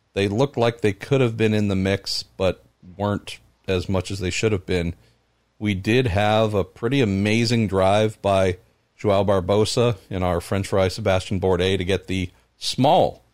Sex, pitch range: male, 95-115 Hz